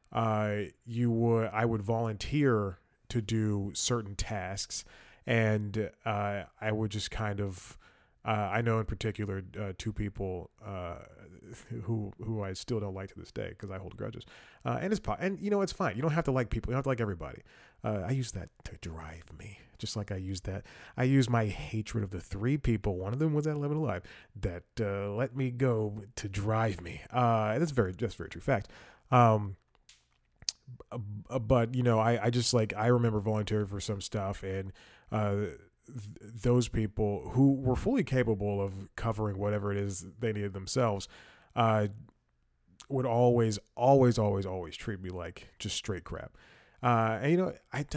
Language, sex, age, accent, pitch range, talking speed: English, male, 30-49, American, 100-125 Hz, 185 wpm